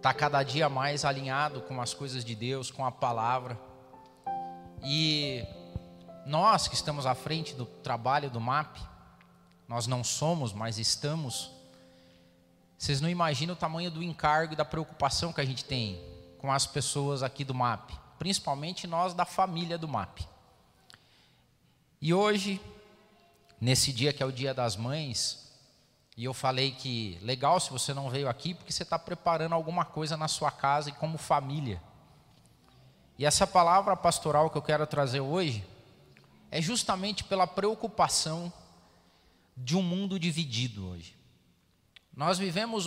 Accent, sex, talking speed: Brazilian, male, 150 wpm